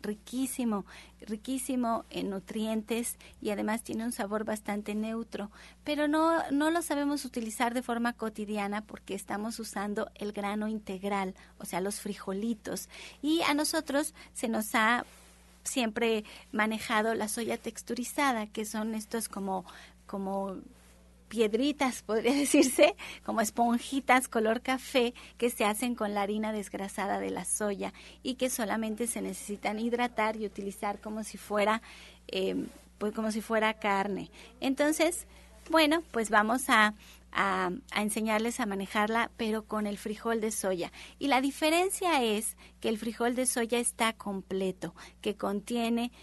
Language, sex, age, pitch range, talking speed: Spanish, female, 30-49, 205-250 Hz, 140 wpm